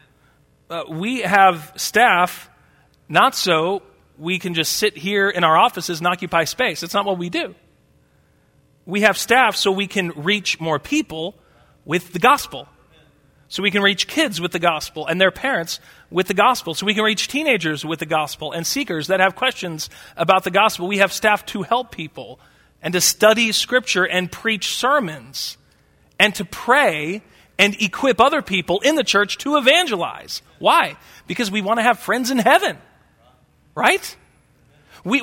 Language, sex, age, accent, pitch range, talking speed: English, male, 40-59, American, 170-235 Hz, 170 wpm